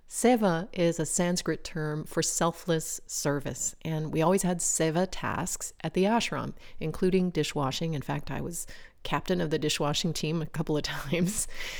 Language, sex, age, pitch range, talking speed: English, female, 30-49, 155-185 Hz, 165 wpm